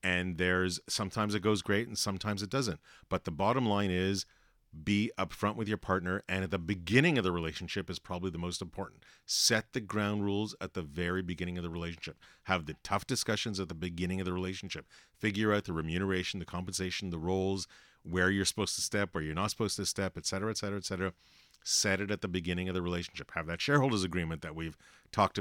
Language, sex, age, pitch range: English, male, 40-59, 85-100 Hz